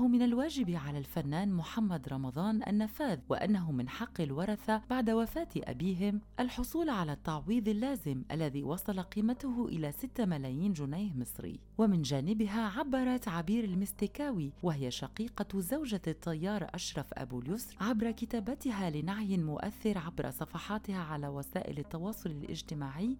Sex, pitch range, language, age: female, 155-230 Hz, Arabic, 30-49